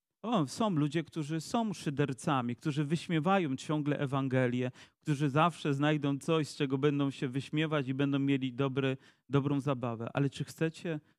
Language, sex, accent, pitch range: Polish, male, native, 145-175 Hz